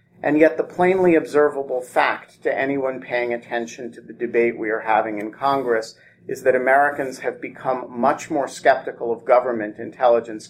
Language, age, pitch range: English, 40-59, 115-150 Hz